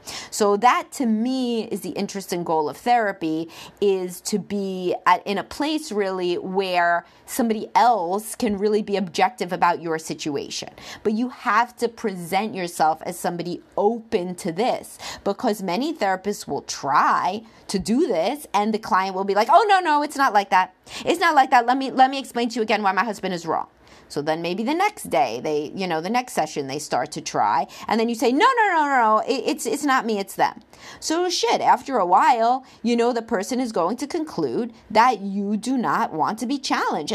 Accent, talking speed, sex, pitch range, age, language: American, 210 wpm, female, 185-255 Hz, 30-49, English